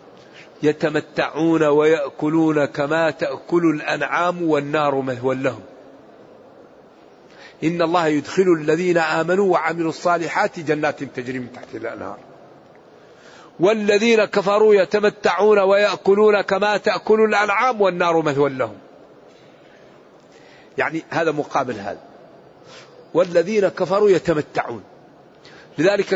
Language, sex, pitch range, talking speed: Arabic, male, 155-205 Hz, 85 wpm